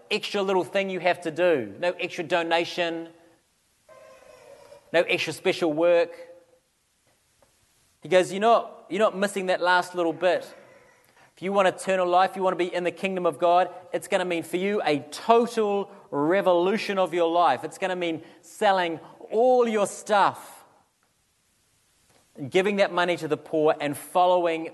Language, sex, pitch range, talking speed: English, male, 165-200 Hz, 165 wpm